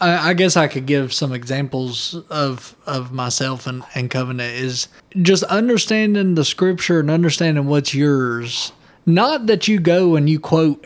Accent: American